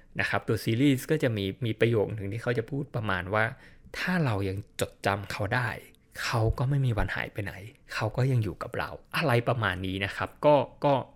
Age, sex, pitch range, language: 20-39, male, 110-140 Hz, Thai